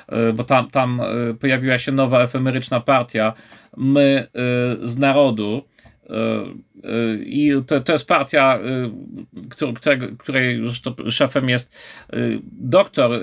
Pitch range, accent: 120-140 Hz, native